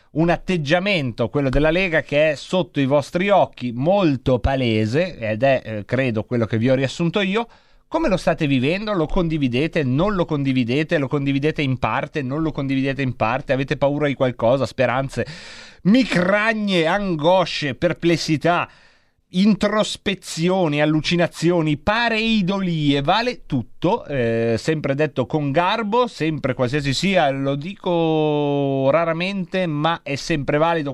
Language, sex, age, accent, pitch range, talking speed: Italian, male, 30-49, native, 135-185 Hz, 135 wpm